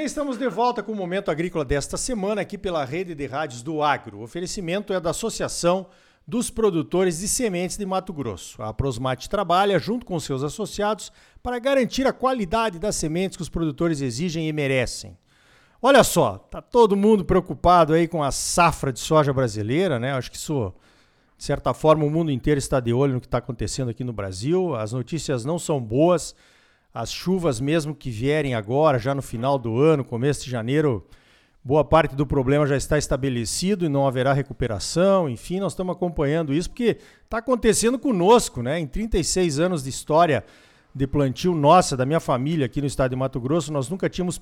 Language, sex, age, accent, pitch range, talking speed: Portuguese, male, 50-69, Brazilian, 135-190 Hz, 190 wpm